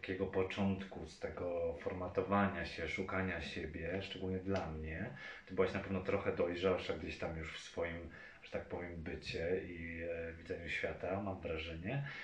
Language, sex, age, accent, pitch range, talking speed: Polish, male, 30-49, native, 95-120 Hz, 160 wpm